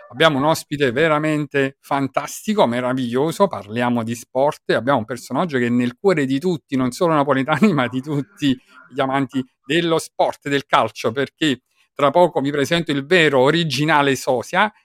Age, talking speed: 50-69, 160 wpm